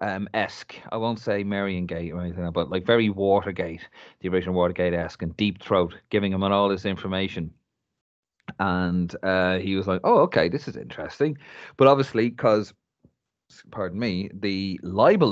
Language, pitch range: English, 90-130 Hz